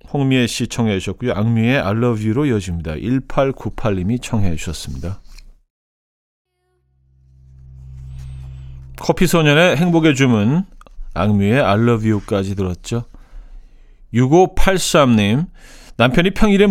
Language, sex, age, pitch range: Korean, male, 40-59, 100-150 Hz